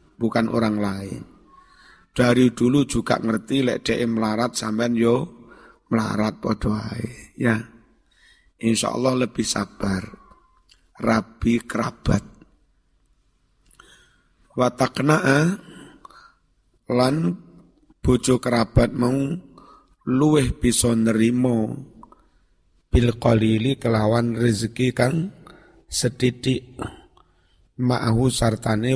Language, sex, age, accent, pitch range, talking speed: Indonesian, male, 50-69, native, 110-130 Hz, 75 wpm